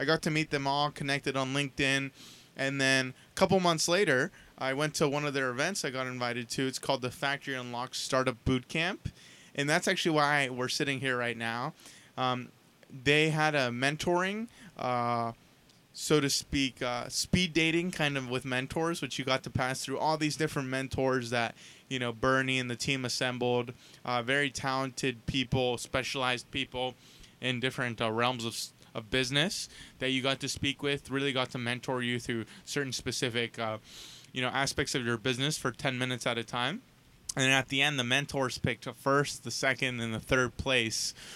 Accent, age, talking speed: American, 20-39, 190 wpm